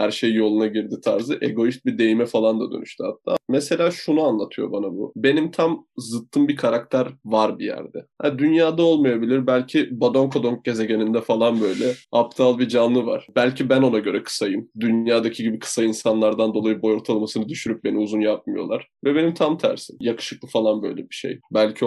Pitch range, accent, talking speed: 115-145 Hz, native, 175 wpm